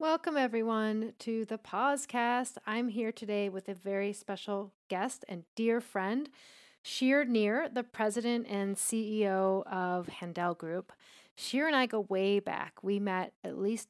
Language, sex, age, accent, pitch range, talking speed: English, female, 30-49, American, 180-220 Hz, 150 wpm